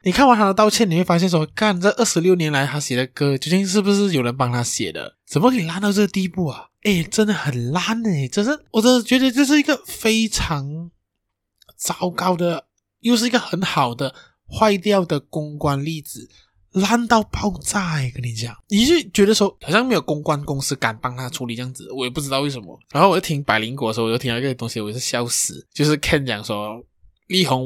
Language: Chinese